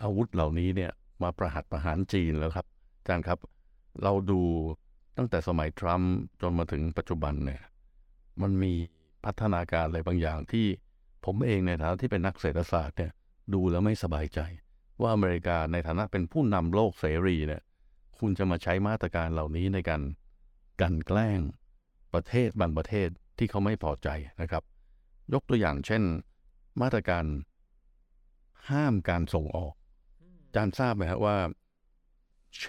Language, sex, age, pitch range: Thai, male, 60-79, 80-105 Hz